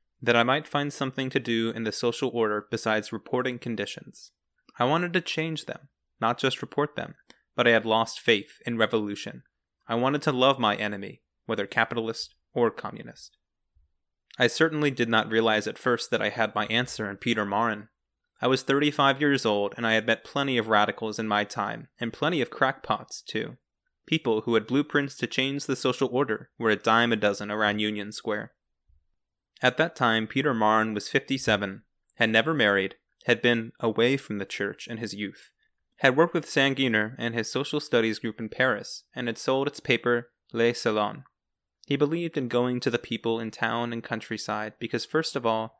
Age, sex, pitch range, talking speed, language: 20-39, male, 110-130 Hz, 190 wpm, English